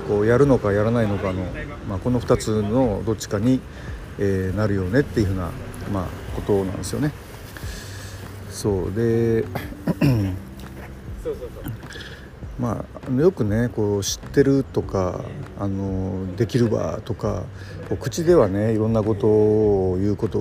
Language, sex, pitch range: Japanese, male, 95-115 Hz